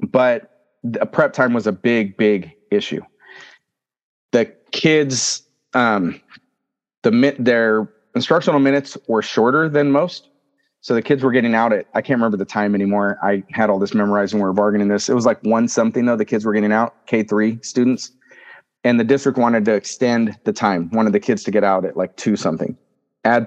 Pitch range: 110-135 Hz